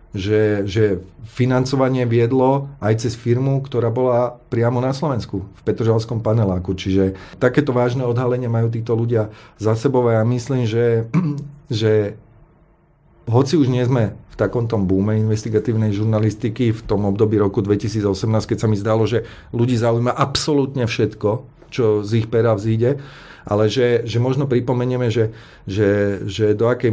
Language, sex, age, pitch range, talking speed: Slovak, male, 40-59, 105-125 Hz, 145 wpm